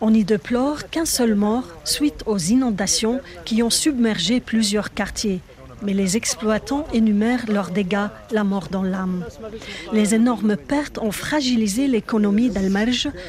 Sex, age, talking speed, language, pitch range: female, 50-69, 140 wpm, French, 205-245 Hz